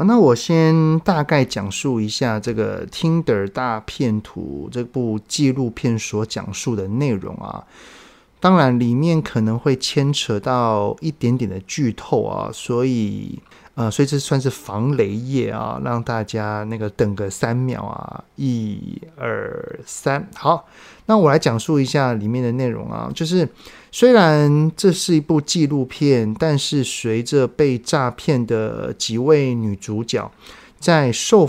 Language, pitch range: Chinese, 115-155 Hz